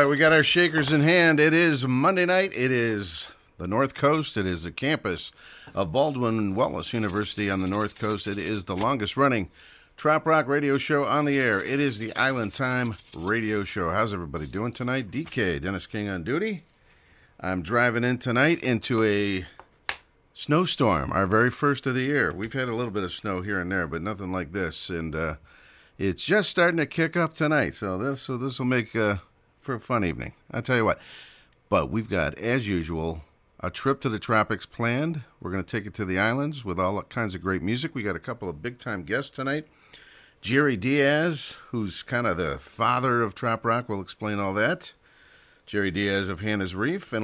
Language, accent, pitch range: English, American, 100-140 Hz